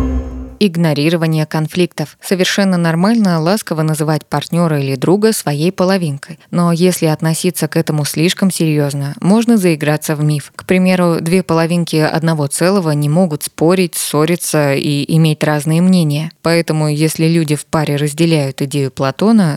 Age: 20-39